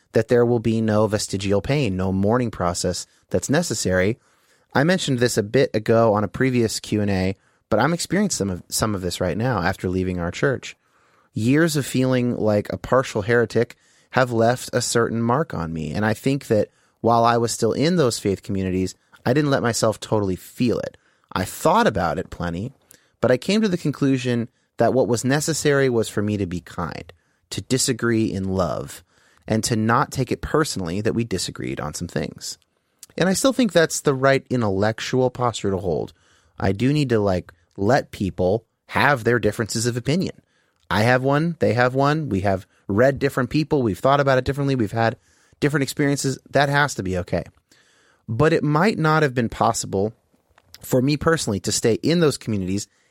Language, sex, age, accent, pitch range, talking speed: English, male, 30-49, American, 100-135 Hz, 190 wpm